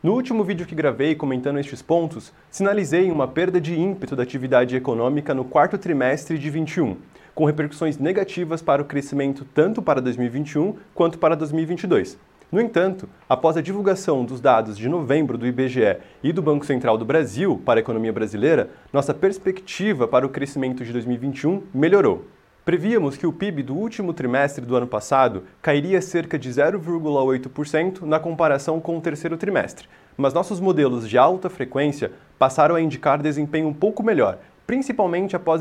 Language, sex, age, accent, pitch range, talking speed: Portuguese, male, 20-39, Brazilian, 135-180 Hz, 165 wpm